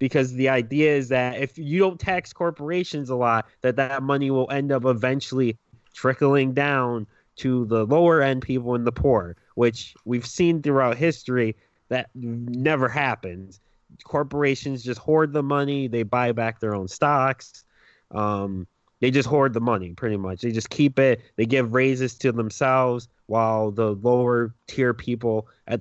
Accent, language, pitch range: American, English, 110-135 Hz